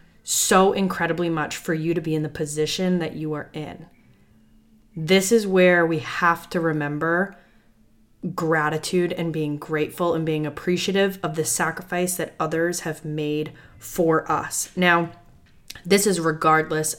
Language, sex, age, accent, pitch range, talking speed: English, female, 20-39, American, 155-175 Hz, 145 wpm